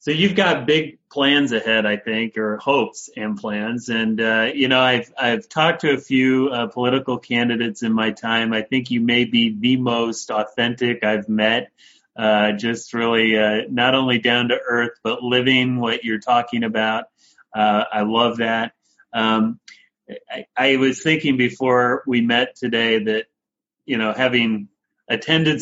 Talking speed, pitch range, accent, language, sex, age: 165 wpm, 110-135 Hz, American, English, male, 30-49